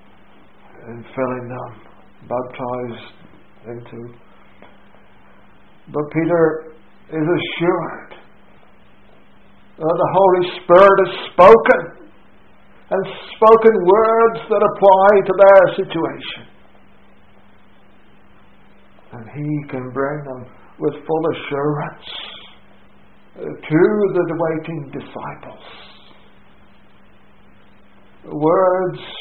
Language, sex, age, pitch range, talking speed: English, male, 60-79, 125-175 Hz, 75 wpm